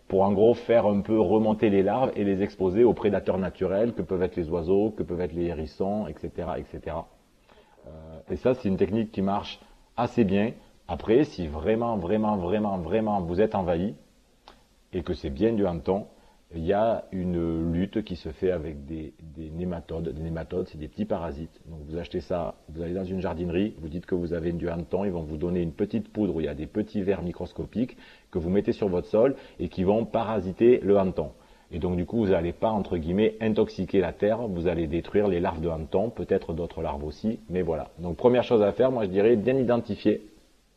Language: French